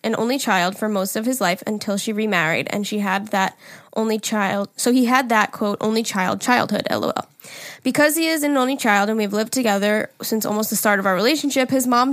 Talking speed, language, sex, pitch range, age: 225 wpm, English, female, 205-240 Hz, 10-29